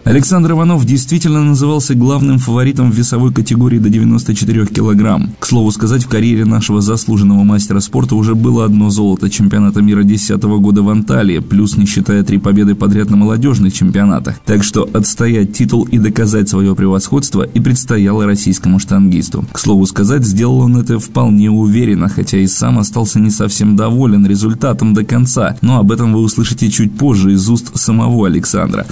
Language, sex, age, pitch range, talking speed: Russian, male, 20-39, 105-120 Hz, 170 wpm